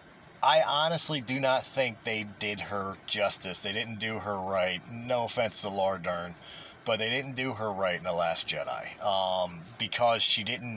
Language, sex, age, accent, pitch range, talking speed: English, male, 40-59, American, 105-130 Hz, 185 wpm